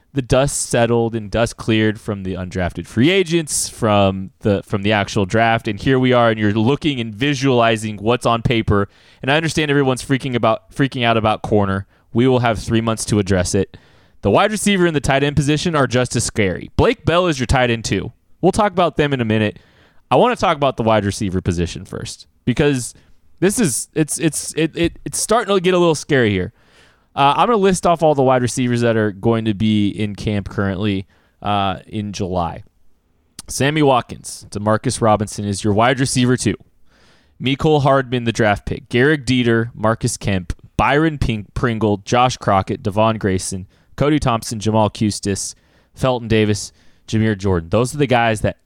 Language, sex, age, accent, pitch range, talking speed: English, male, 20-39, American, 100-130 Hz, 195 wpm